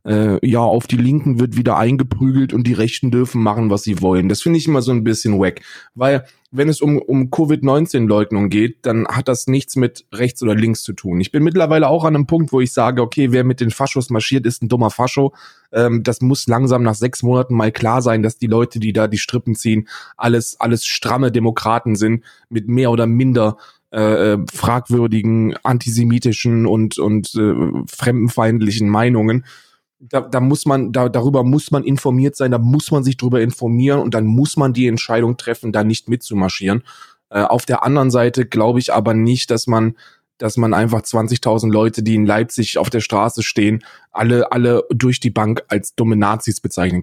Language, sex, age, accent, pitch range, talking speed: German, male, 20-39, German, 110-125 Hz, 195 wpm